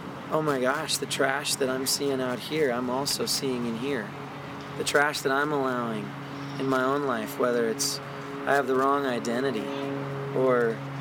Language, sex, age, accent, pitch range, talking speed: English, male, 30-49, American, 125-140 Hz, 175 wpm